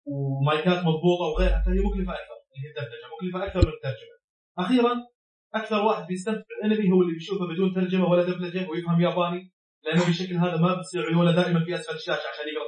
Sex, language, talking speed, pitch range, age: male, Arabic, 180 wpm, 155-195 Hz, 30-49